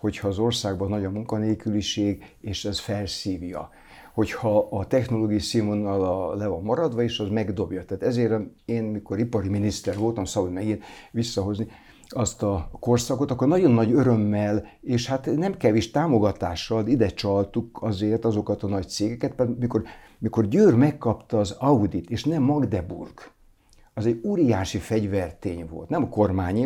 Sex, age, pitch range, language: male, 60-79, 100-120 Hz, Hungarian